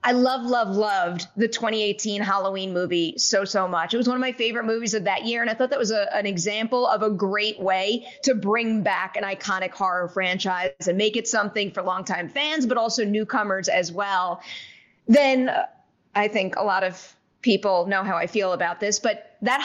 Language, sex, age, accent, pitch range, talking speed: English, female, 30-49, American, 200-265 Hz, 200 wpm